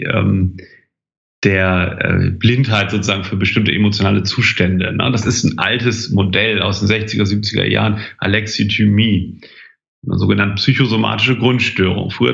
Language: German